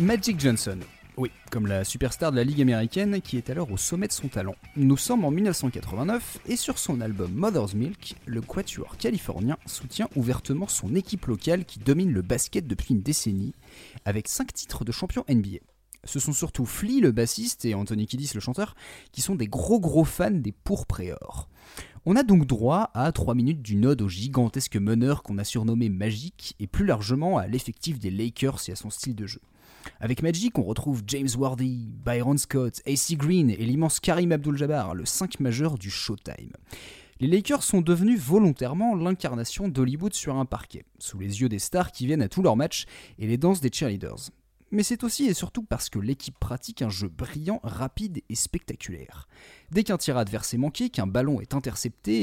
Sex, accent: male, French